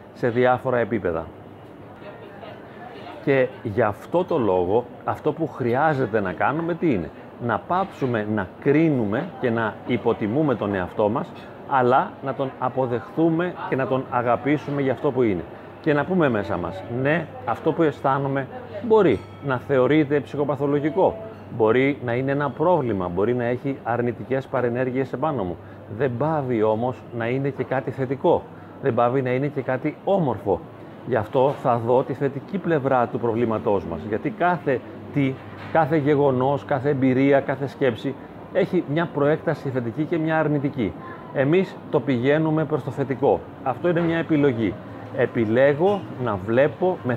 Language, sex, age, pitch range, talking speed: Greek, male, 30-49, 120-150 Hz, 150 wpm